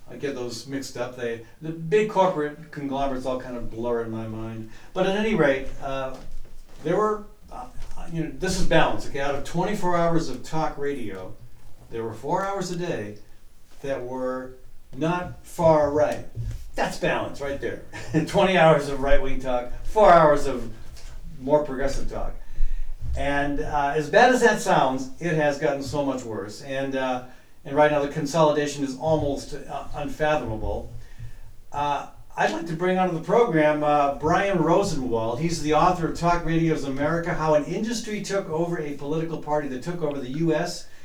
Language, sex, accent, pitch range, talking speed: English, male, American, 130-175 Hz, 175 wpm